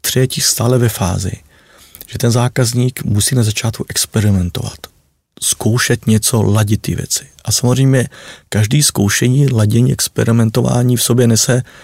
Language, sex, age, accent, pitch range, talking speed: Czech, male, 40-59, native, 110-130 Hz, 125 wpm